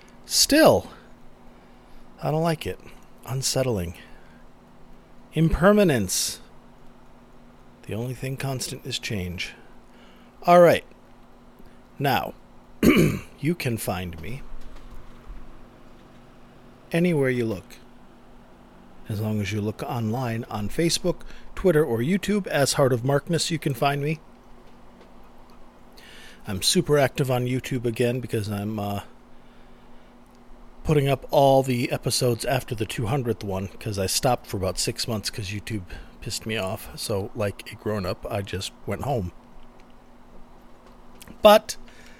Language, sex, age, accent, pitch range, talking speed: English, male, 40-59, American, 110-140 Hz, 115 wpm